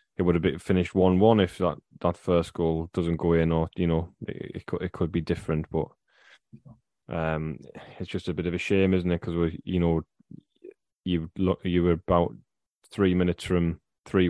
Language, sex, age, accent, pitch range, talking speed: English, male, 10-29, British, 85-95 Hz, 195 wpm